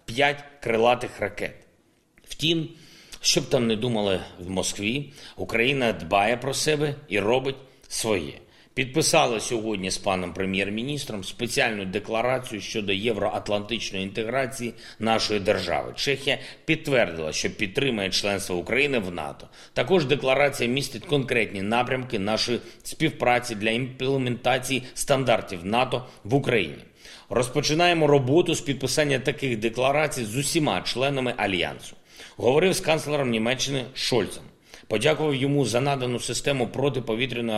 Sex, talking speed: male, 115 wpm